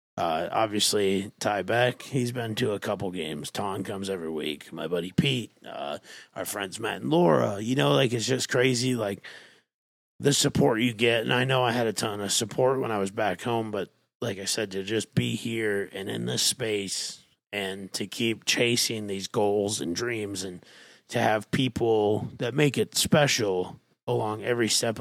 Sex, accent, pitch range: male, American, 100-125 Hz